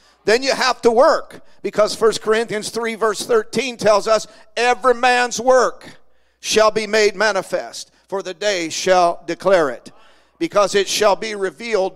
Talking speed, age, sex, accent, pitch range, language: 155 wpm, 50-69, male, American, 170-210 Hz, English